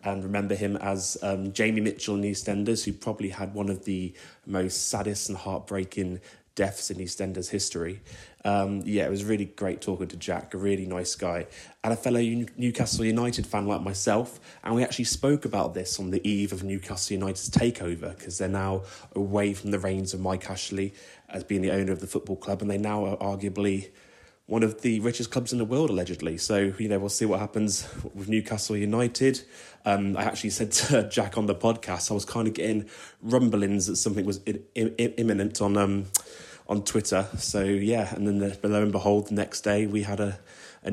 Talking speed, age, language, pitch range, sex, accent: 205 wpm, 20-39, English, 95-110 Hz, male, British